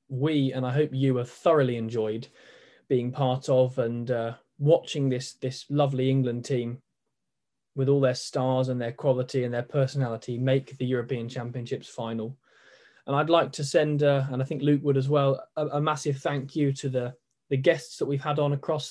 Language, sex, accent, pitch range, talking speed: English, male, British, 130-150 Hz, 195 wpm